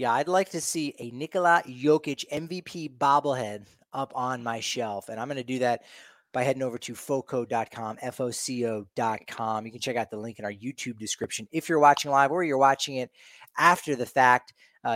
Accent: American